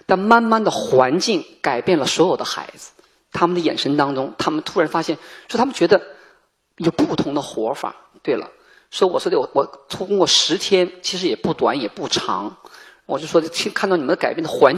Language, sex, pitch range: Chinese, male, 170-250 Hz